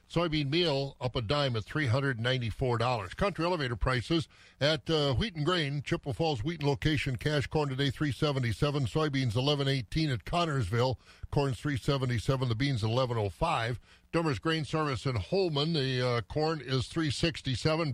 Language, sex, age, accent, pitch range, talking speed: English, male, 50-69, American, 125-160 Hz, 175 wpm